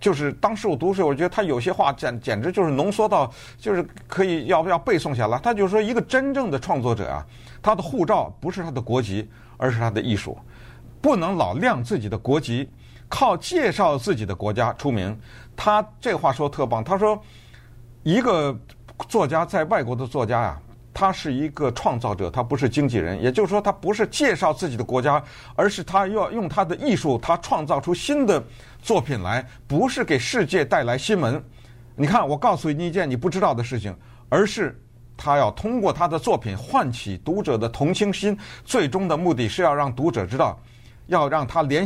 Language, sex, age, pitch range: Chinese, male, 50-69, 120-175 Hz